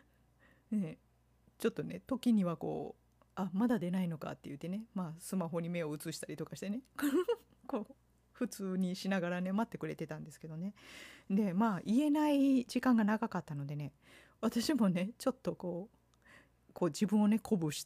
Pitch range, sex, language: 160-245 Hz, female, Japanese